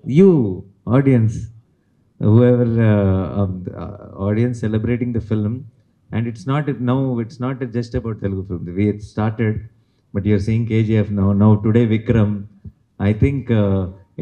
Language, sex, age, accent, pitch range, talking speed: Tamil, male, 30-49, native, 100-115 Hz, 150 wpm